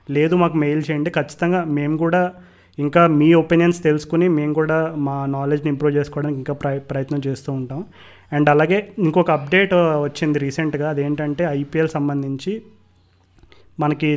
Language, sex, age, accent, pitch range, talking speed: Telugu, male, 30-49, native, 145-170 Hz, 135 wpm